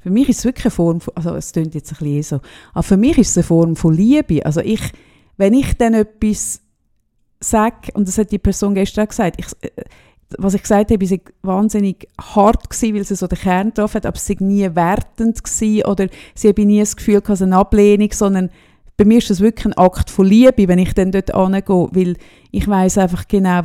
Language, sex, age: German, female, 30-49